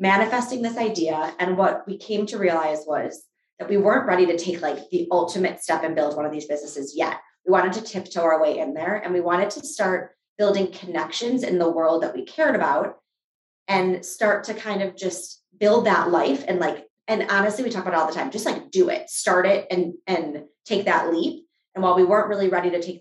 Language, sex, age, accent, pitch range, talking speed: English, female, 20-39, American, 165-210 Hz, 230 wpm